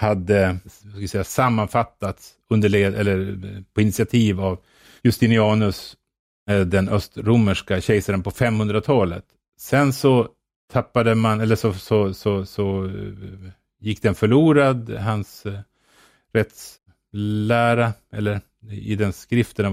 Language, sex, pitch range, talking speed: English, male, 100-120 Hz, 105 wpm